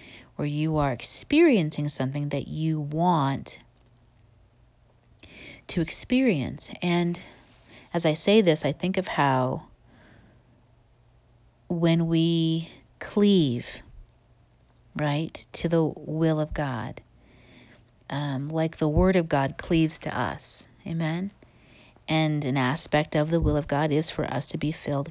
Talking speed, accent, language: 125 wpm, American, English